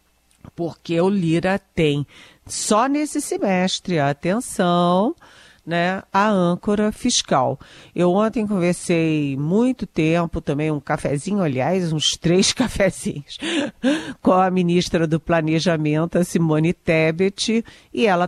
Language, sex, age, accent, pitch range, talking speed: Portuguese, female, 50-69, Brazilian, 150-195 Hz, 110 wpm